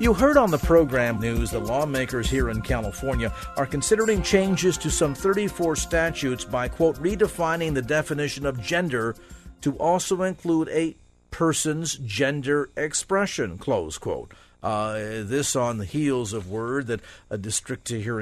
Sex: male